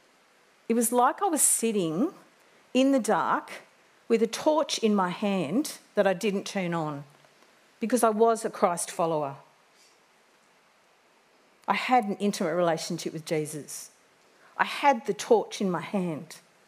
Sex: female